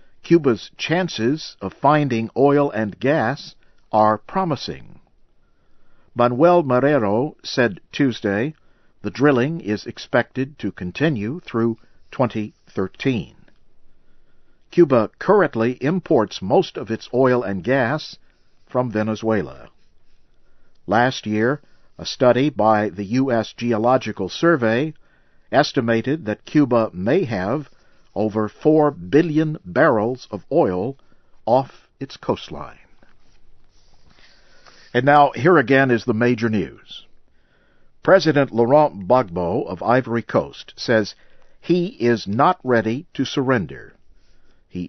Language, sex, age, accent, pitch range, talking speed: English, male, 50-69, American, 110-145 Hz, 105 wpm